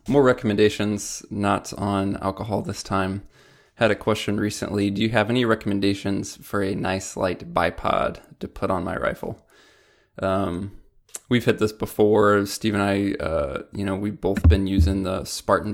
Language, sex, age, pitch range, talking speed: English, male, 20-39, 95-105 Hz, 165 wpm